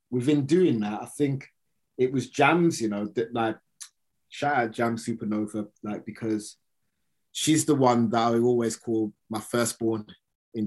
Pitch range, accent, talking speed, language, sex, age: 105-120 Hz, British, 155 wpm, English, male, 20-39